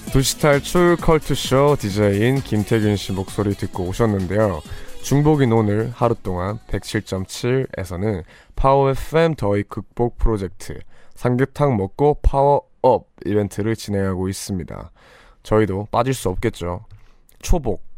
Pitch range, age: 95-120 Hz, 20-39